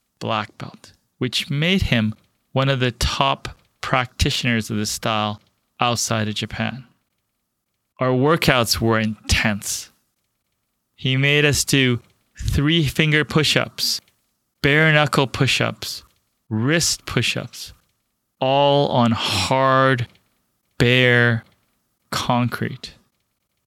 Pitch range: 110-135 Hz